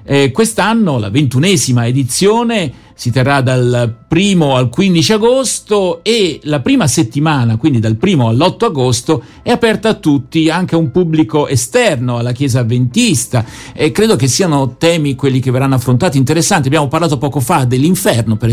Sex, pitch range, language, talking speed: male, 125-165 Hz, Italian, 160 wpm